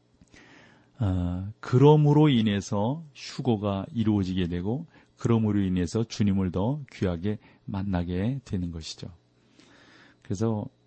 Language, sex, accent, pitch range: Korean, male, native, 90-115 Hz